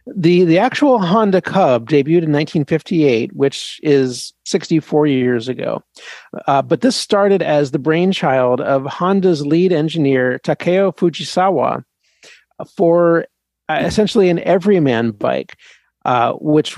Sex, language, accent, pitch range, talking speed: male, English, American, 135-175 Hz, 120 wpm